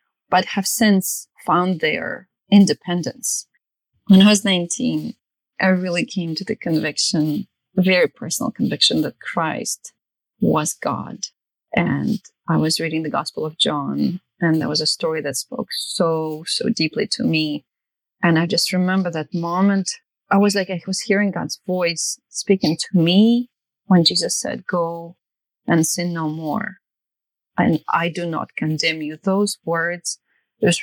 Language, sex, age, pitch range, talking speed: English, female, 30-49, 160-200 Hz, 150 wpm